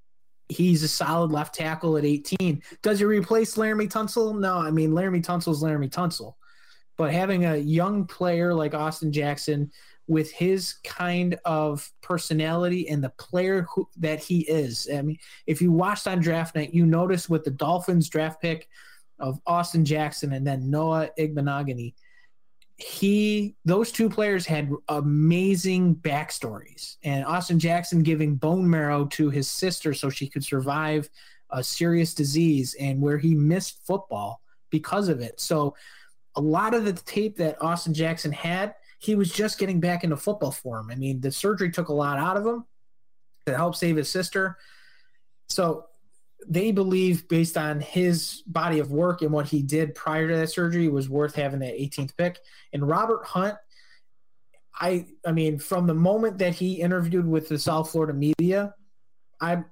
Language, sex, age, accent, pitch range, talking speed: English, male, 20-39, American, 150-185 Hz, 170 wpm